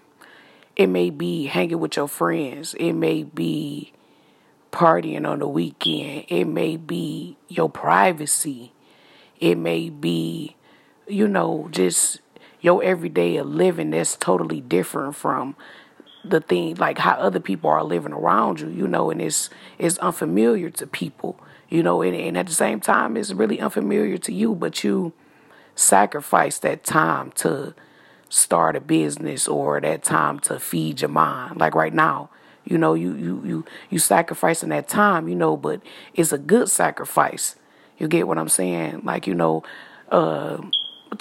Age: 30-49